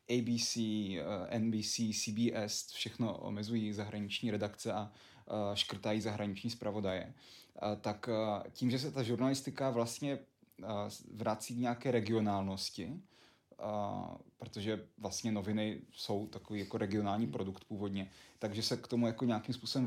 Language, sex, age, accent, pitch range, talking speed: Czech, male, 20-39, native, 105-120 Hz, 115 wpm